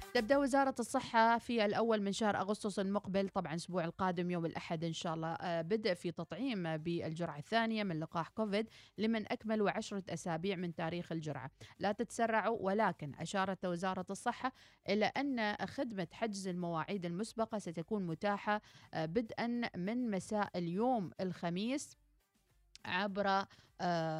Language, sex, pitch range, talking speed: Arabic, female, 170-215 Hz, 130 wpm